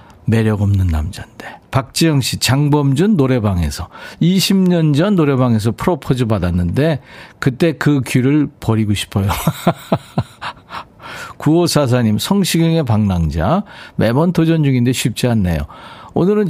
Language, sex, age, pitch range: Korean, male, 50-69, 105-155 Hz